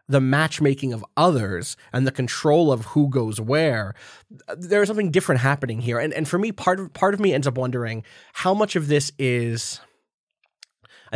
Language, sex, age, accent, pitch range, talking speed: English, male, 20-39, American, 115-140 Hz, 190 wpm